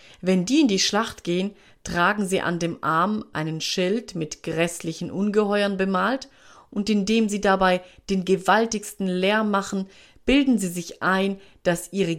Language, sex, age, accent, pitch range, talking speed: German, female, 30-49, German, 175-215 Hz, 155 wpm